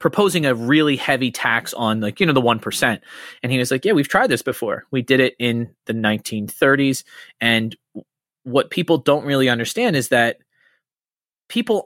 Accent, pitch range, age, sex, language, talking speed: American, 115-150 Hz, 30-49, male, English, 175 wpm